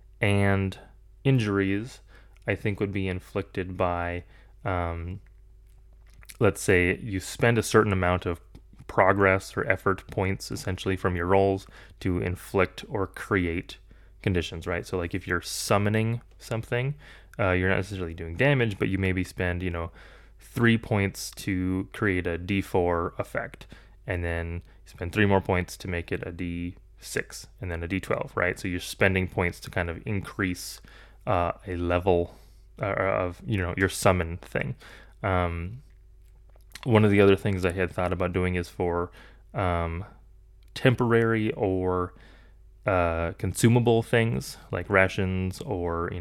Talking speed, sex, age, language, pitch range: 150 wpm, male, 20-39, English, 90-100 Hz